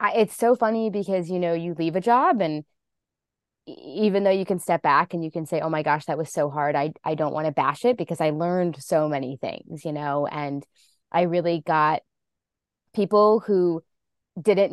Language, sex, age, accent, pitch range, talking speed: English, female, 20-39, American, 155-190 Hz, 205 wpm